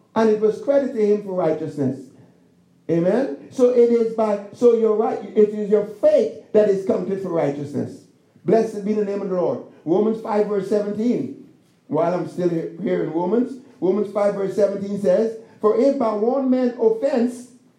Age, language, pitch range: 50-69, English, 195-250 Hz